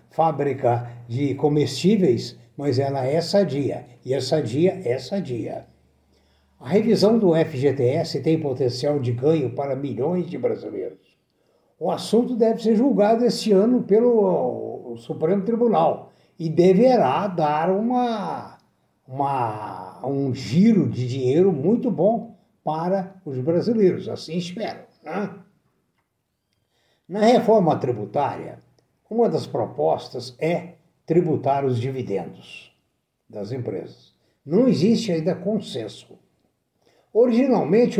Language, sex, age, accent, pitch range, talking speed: Portuguese, male, 60-79, Brazilian, 140-210 Hz, 110 wpm